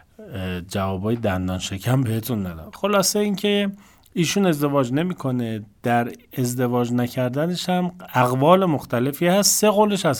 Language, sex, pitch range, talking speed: Persian, male, 100-160 Hz, 120 wpm